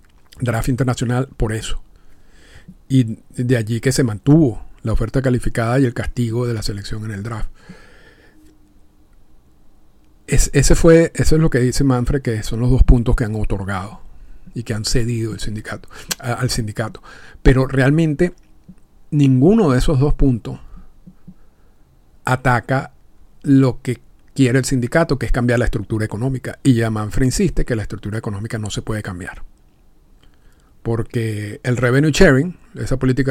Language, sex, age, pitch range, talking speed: Spanish, male, 50-69, 110-135 Hz, 150 wpm